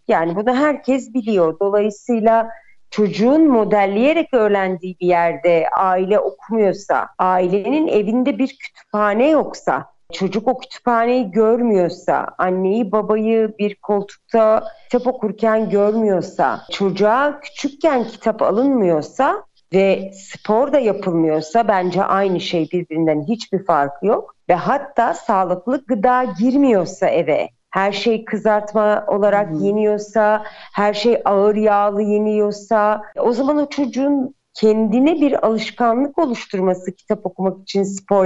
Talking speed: 110 wpm